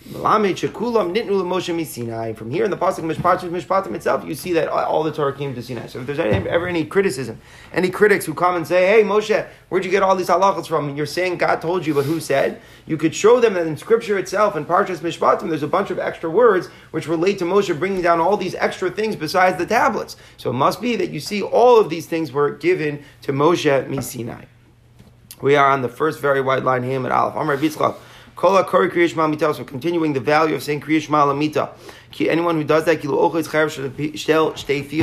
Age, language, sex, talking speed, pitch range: 30-49, English, male, 195 wpm, 140-185 Hz